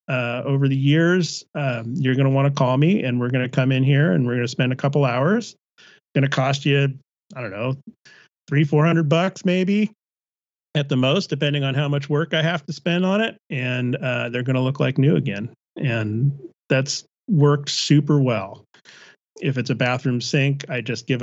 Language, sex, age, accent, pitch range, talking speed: English, male, 40-59, American, 125-155 Hz, 200 wpm